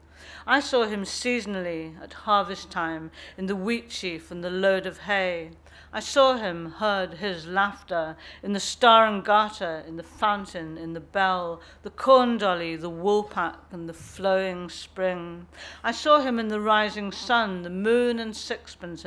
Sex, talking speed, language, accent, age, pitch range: female, 165 wpm, English, British, 50-69, 170-210 Hz